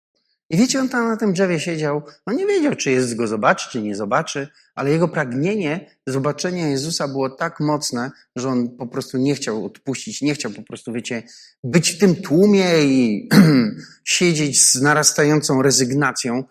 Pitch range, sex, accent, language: 130-170 Hz, male, native, Polish